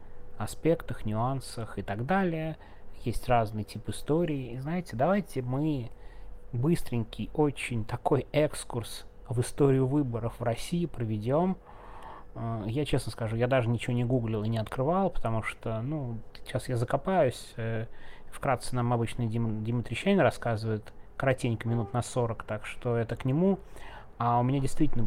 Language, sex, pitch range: Russian, male, 110-135 Hz